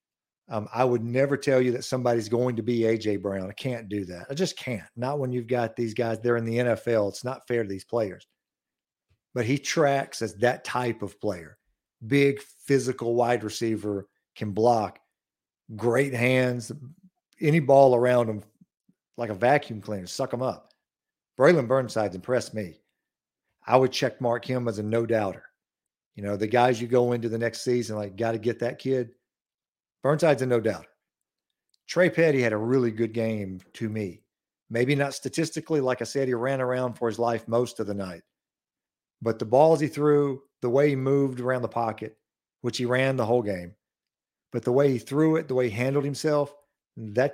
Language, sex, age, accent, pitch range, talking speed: English, male, 50-69, American, 115-130 Hz, 190 wpm